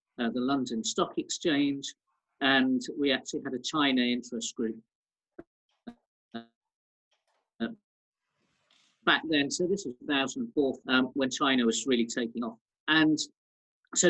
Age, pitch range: 50-69, 120-155 Hz